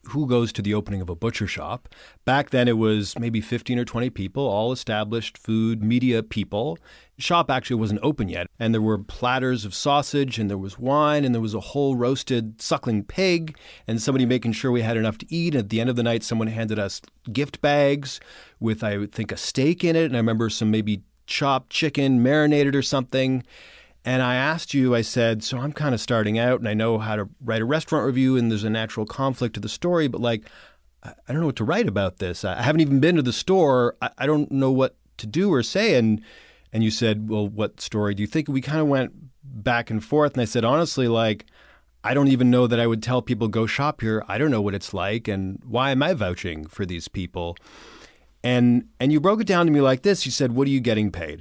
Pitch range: 110-135 Hz